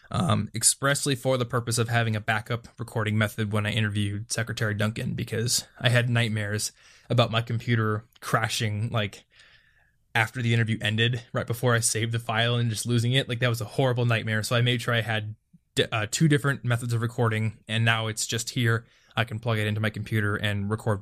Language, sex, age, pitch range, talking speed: English, male, 20-39, 110-125 Hz, 205 wpm